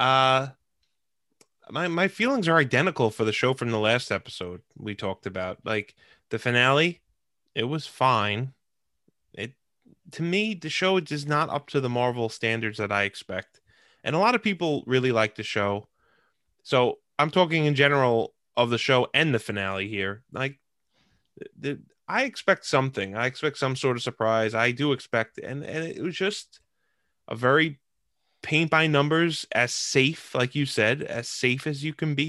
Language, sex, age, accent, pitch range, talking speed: English, male, 20-39, American, 105-145 Hz, 175 wpm